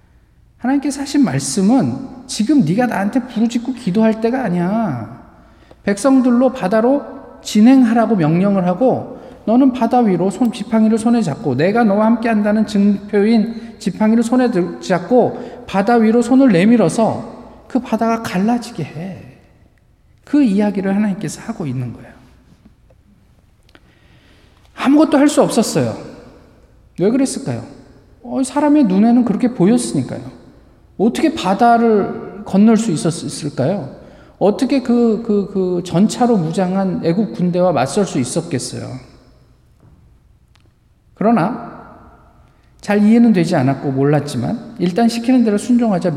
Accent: native